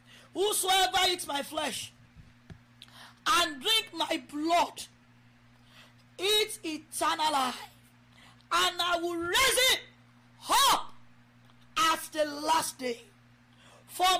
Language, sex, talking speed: English, female, 95 wpm